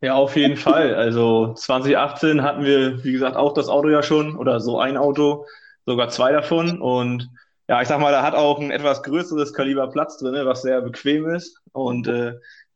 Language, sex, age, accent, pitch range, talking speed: German, male, 20-39, German, 130-155 Hz, 200 wpm